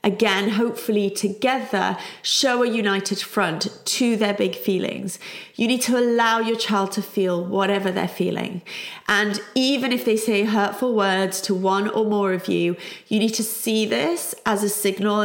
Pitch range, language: 195-250 Hz, English